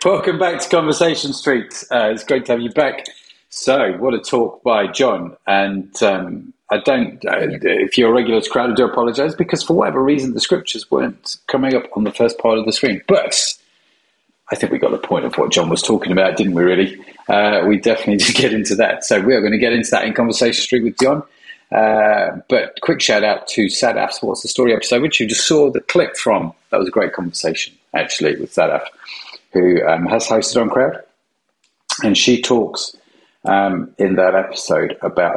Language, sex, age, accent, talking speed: English, male, 40-59, British, 205 wpm